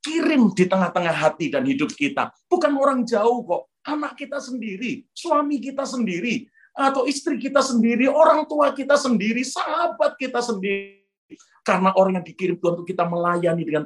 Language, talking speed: Indonesian, 155 wpm